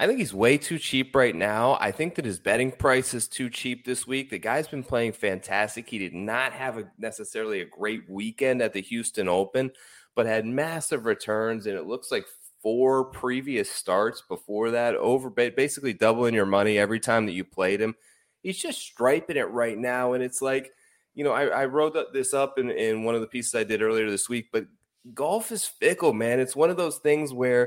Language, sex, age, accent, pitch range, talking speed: English, male, 20-39, American, 110-135 Hz, 215 wpm